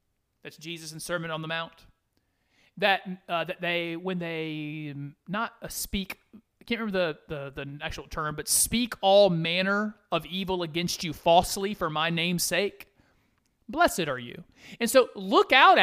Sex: male